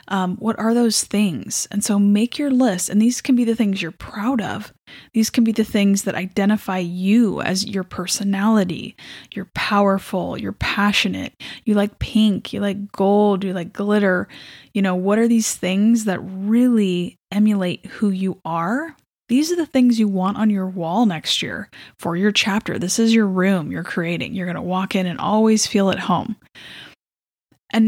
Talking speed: 185 wpm